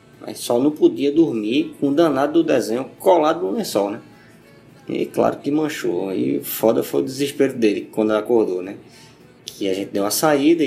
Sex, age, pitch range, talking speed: male, 20-39, 110-165 Hz, 185 wpm